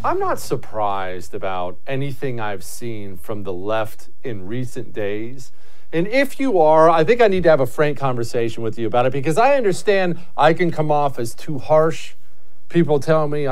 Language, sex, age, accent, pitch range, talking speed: English, male, 40-59, American, 120-175 Hz, 190 wpm